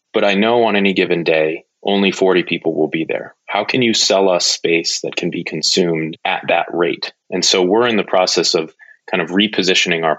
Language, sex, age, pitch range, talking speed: English, male, 30-49, 85-105 Hz, 220 wpm